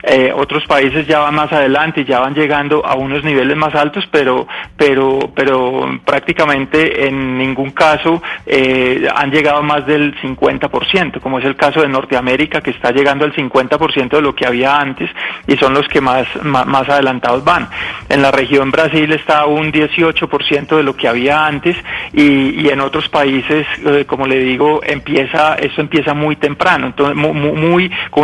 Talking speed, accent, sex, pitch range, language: 175 wpm, Colombian, male, 135-155 Hz, Spanish